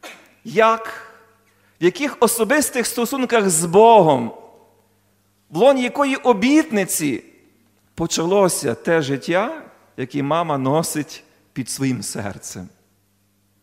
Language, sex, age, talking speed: Ukrainian, male, 40-59, 90 wpm